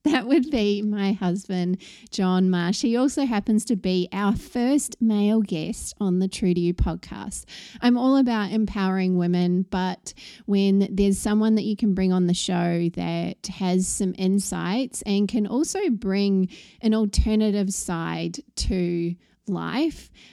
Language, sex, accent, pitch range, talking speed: English, female, Australian, 180-220 Hz, 150 wpm